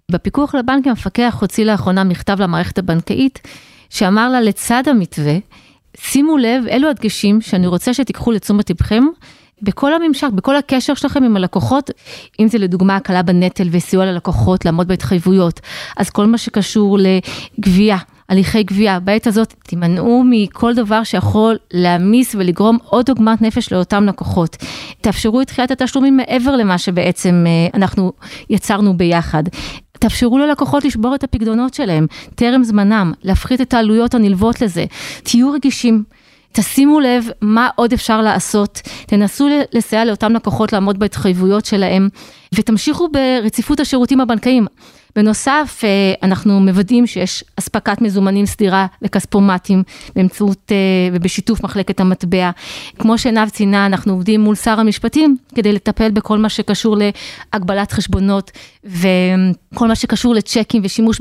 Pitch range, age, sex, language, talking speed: 190-235 Hz, 30-49, female, Hebrew, 125 wpm